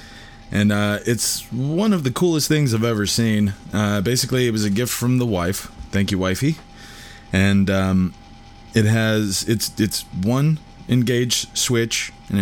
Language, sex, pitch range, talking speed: English, male, 95-115 Hz, 160 wpm